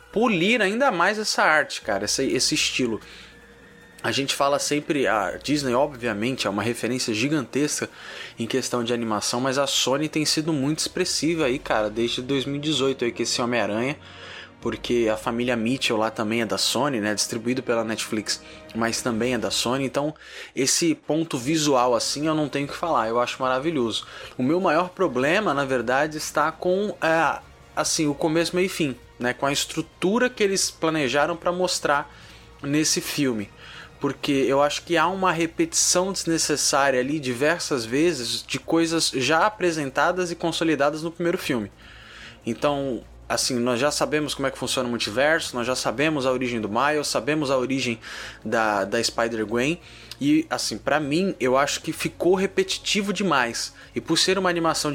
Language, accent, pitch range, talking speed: Portuguese, Brazilian, 120-165 Hz, 170 wpm